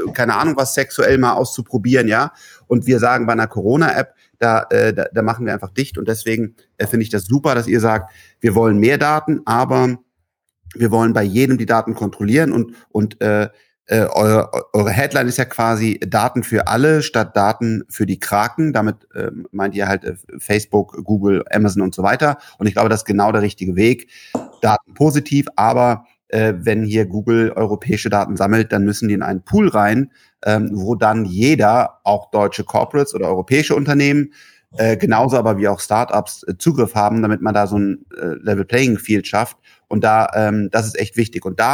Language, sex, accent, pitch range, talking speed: German, male, German, 105-125 Hz, 185 wpm